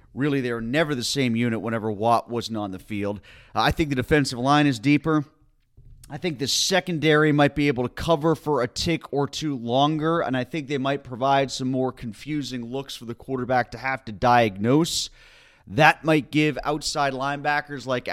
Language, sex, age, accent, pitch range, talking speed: English, male, 30-49, American, 125-160 Hz, 190 wpm